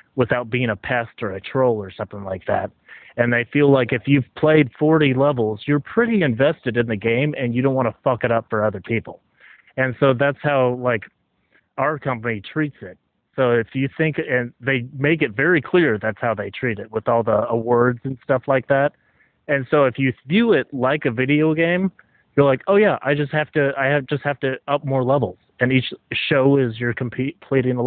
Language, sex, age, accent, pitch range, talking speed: English, male, 30-49, American, 115-145 Hz, 220 wpm